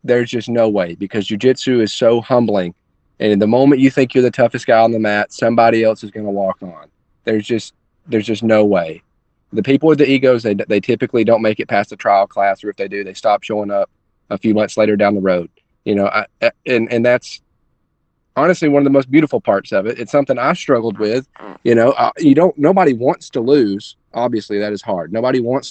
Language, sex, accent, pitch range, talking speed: English, male, American, 105-135 Hz, 235 wpm